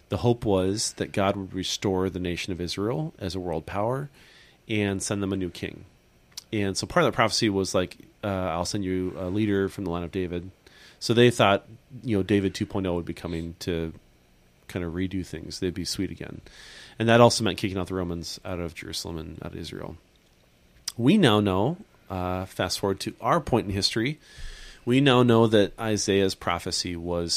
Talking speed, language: 200 wpm, English